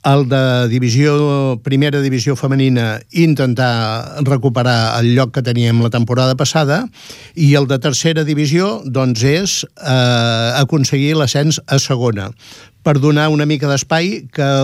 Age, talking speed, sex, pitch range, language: 60-79, 135 wpm, male, 120-140 Hz, Italian